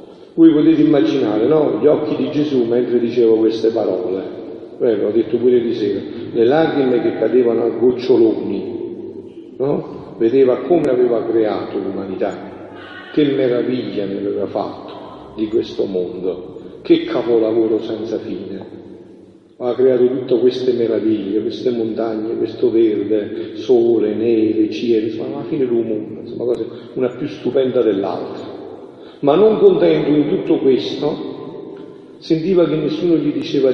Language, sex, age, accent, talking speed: Italian, male, 50-69, native, 130 wpm